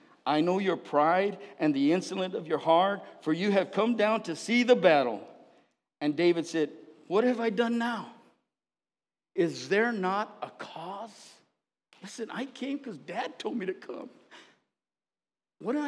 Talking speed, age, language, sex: 165 wpm, 50-69, English, male